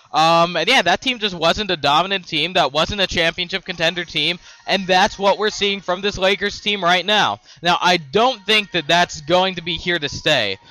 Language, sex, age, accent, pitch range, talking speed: English, male, 20-39, American, 150-185 Hz, 220 wpm